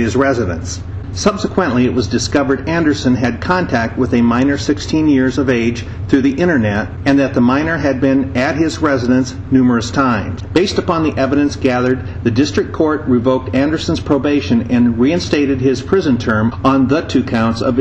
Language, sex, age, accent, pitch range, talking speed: English, male, 50-69, American, 115-140 Hz, 170 wpm